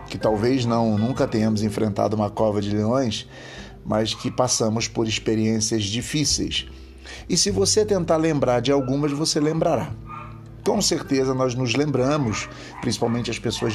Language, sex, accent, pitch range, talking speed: Portuguese, male, Brazilian, 115-145 Hz, 145 wpm